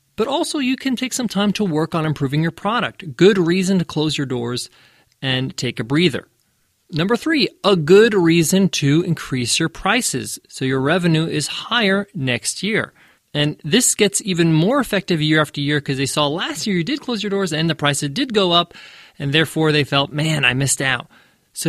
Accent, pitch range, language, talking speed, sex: American, 125-190 Hz, English, 200 wpm, male